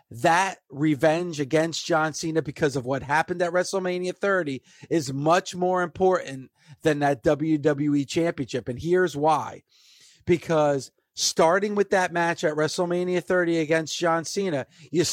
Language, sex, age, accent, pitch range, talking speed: English, male, 40-59, American, 155-185 Hz, 140 wpm